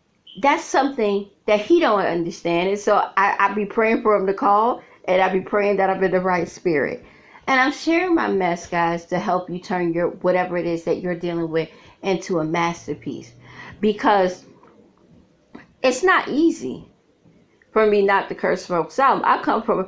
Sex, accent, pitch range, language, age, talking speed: female, American, 185-250 Hz, English, 30-49, 185 wpm